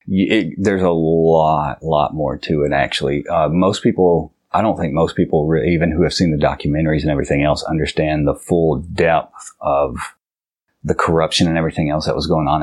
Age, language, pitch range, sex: 30-49, English, 80-95 Hz, male